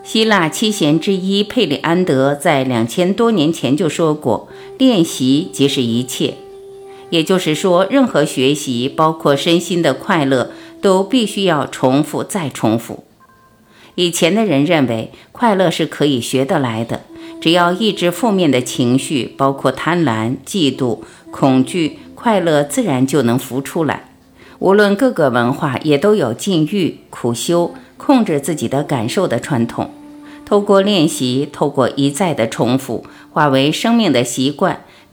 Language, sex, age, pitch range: Chinese, female, 50-69, 130-200 Hz